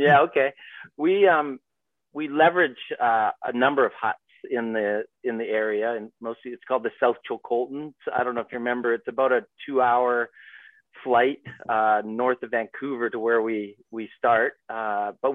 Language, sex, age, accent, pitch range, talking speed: English, male, 40-59, American, 115-140 Hz, 180 wpm